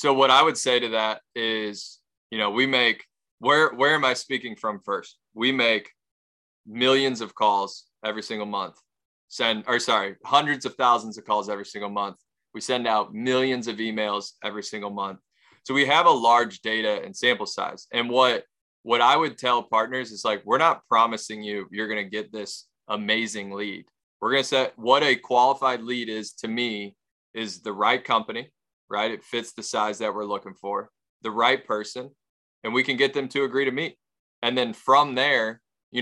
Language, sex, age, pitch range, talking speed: English, male, 20-39, 110-125 Hz, 195 wpm